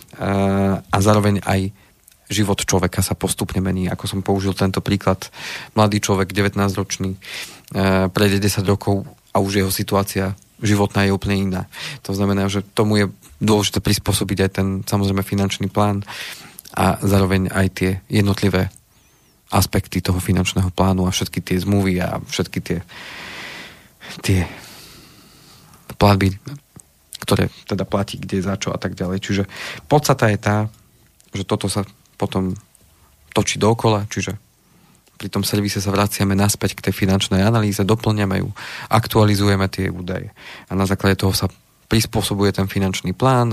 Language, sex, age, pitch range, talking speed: Slovak, male, 30-49, 95-105 Hz, 140 wpm